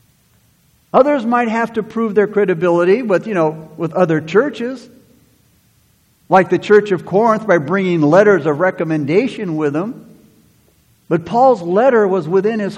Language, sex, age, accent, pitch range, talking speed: English, male, 60-79, American, 160-220 Hz, 145 wpm